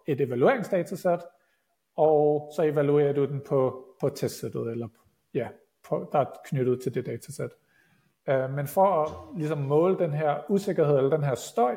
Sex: male